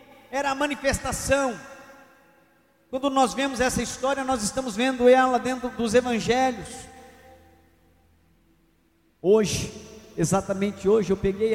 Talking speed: 105 wpm